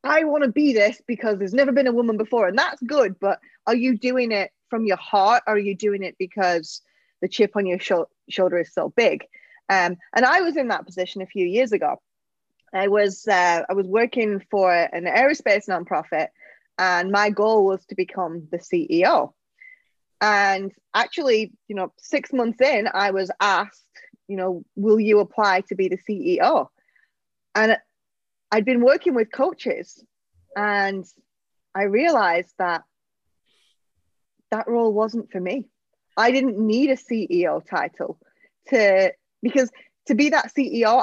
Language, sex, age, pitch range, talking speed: English, female, 20-39, 190-255 Hz, 165 wpm